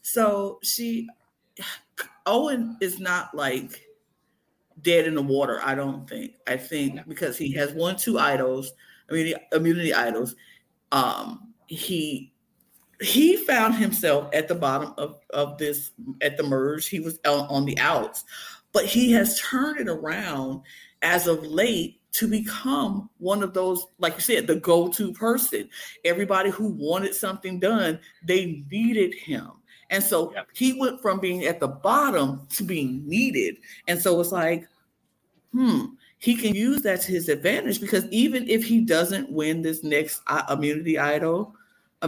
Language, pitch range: English, 160-230 Hz